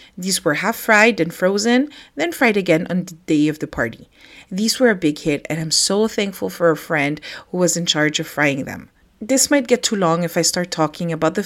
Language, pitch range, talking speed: English, 160-225 Hz, 235 wpm